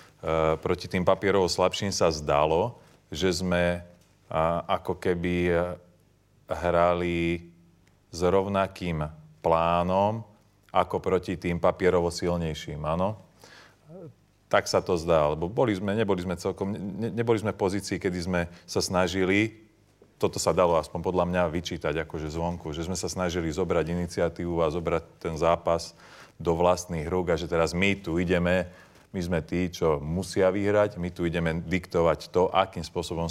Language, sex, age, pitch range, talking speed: Slovak, male, 30-49, 85-95 Hz, 145 wpm